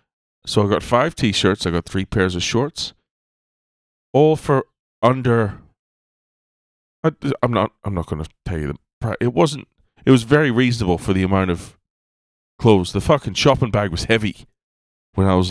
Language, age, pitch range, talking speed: English, 30-49, 80-110 Hz, 165 wpm